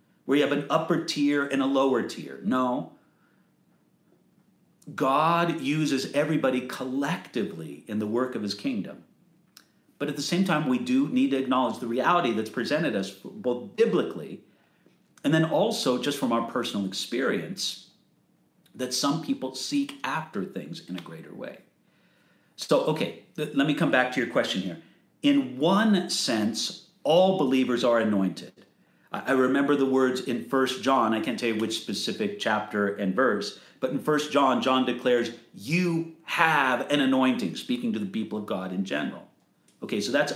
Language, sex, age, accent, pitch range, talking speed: English, male, 50-69, American, 125-175 Hz, 165 wpm